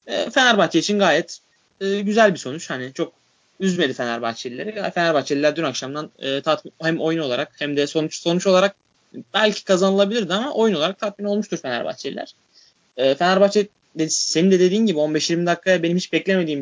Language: Turkish